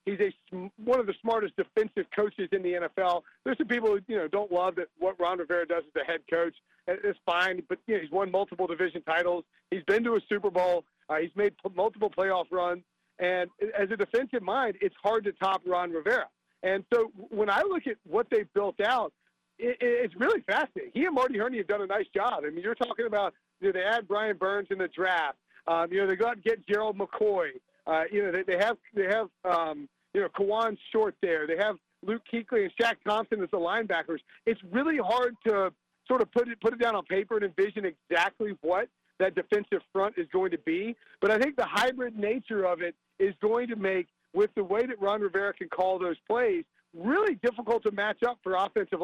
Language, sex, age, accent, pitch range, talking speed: English, male, 40-59, American, 185-240 Hz, 230 wpm